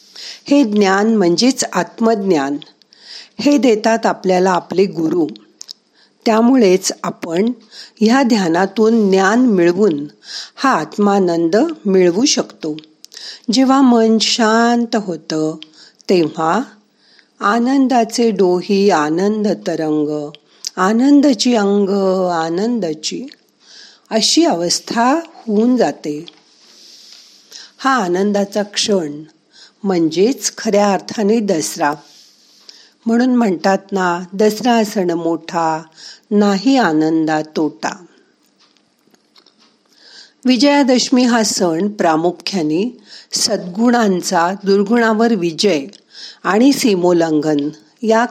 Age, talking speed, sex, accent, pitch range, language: 50-69, 75 wpm, female, native, 170-235 Hz, Marathi